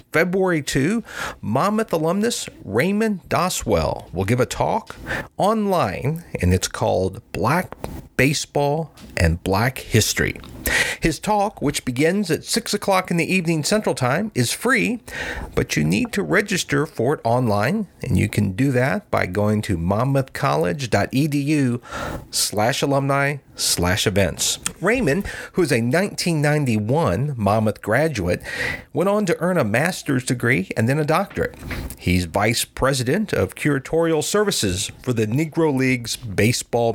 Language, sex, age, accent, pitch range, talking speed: English, male, 50-69, American, 110-160 Hz, 135 wpm